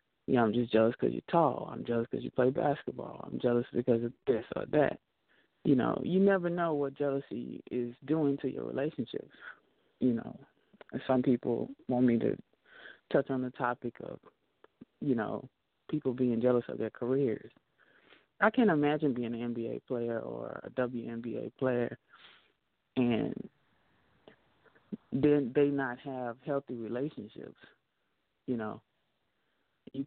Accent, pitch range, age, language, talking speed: American, 120-140 Hz, 20-39, English, 150 wpm